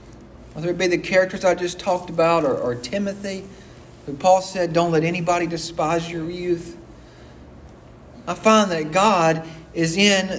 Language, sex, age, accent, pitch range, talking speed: English, male, 50-69, American, 165-200 Hz, 155 wpm